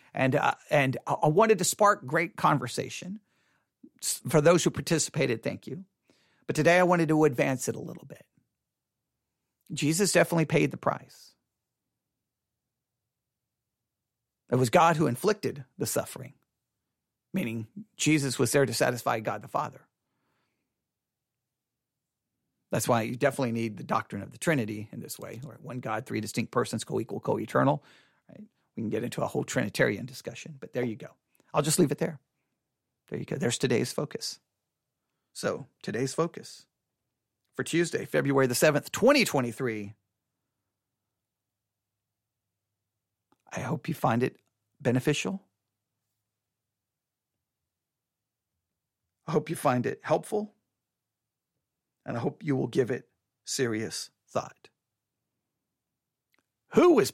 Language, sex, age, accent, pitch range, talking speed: English, male, 40-59, American, 115-155 Hz, 125 wpm